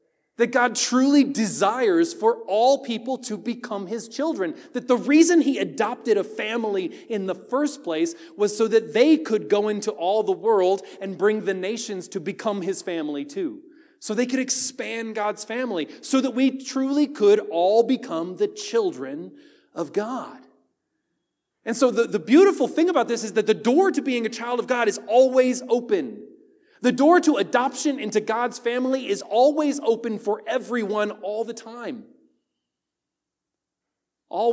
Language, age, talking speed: English, 30-49, 165 wpm